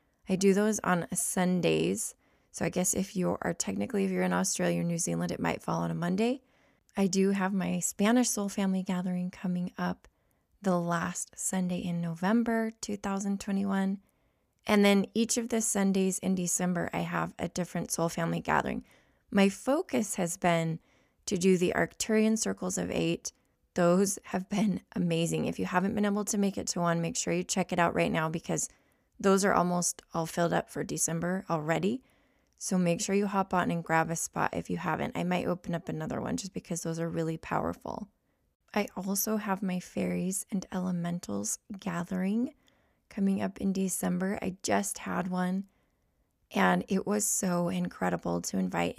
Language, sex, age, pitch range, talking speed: English, female, 20-39, 165-200 Hz, 180 wpm